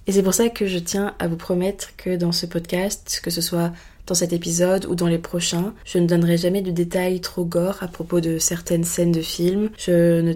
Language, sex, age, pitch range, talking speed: French, female, 20-39, 170-190 Hz, 240 wpm